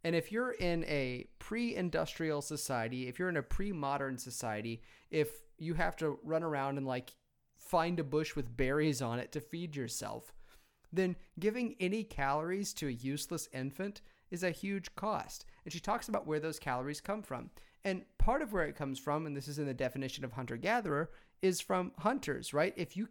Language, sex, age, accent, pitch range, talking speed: English, male, 30-49, American, 150-200 Hz, 190 wpm